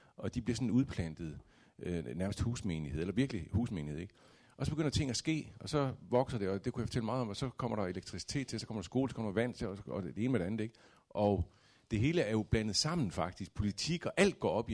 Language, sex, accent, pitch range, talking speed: Danish, male, native, 90-125 Hz, 265 wpm